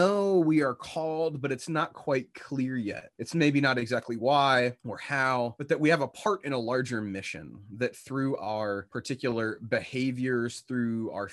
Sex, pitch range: male, 105-150 Hz